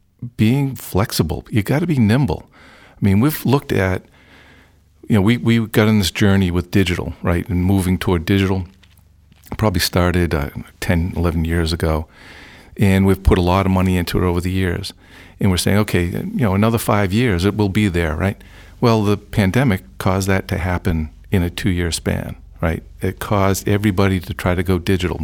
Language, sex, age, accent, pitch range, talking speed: English, male, 50-69, American, 90-105 Hz, 195 wpm